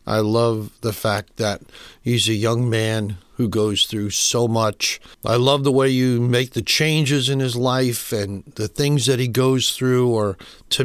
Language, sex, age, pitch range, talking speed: English, male, 60-79, 110-135 Hz, 190 wpm